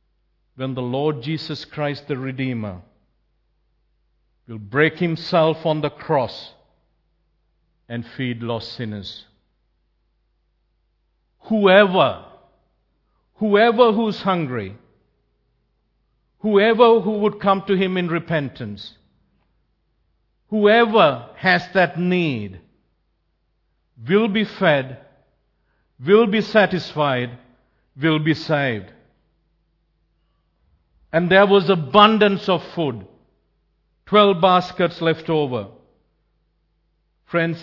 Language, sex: English, male